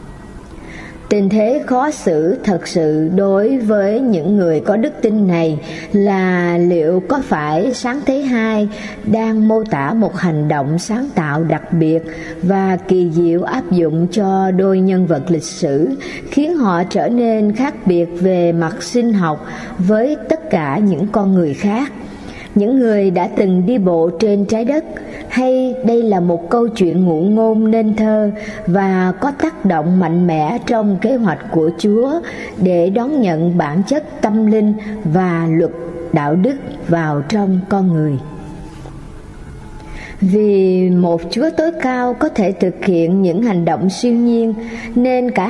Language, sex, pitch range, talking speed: Vietnamese, male, 170-225 Hz, 160 wpm